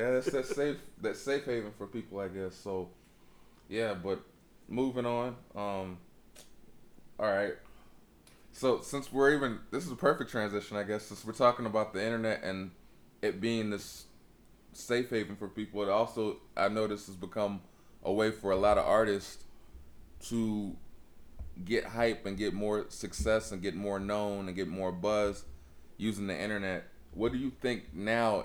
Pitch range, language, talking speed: 90-105 Hz, English, 170 wpm